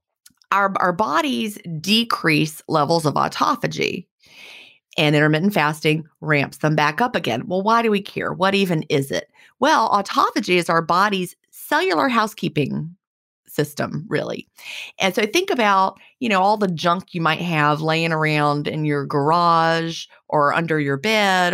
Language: English